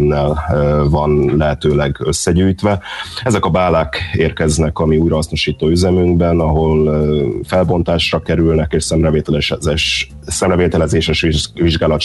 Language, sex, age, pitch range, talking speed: Hungarian, male, 30-49, 75-85 Hz, 90 wpm